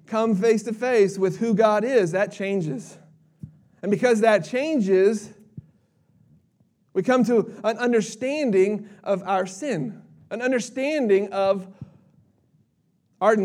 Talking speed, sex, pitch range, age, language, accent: 115 wpm, male, 160-215 Hz, 30-49, English, American